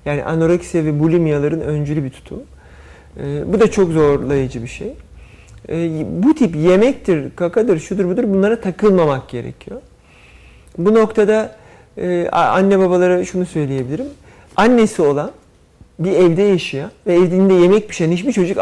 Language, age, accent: Turkish, 40-59, native